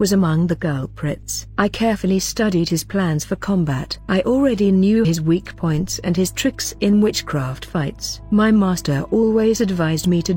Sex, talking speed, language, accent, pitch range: female, 170 wpm, English, British, 160-190 Hz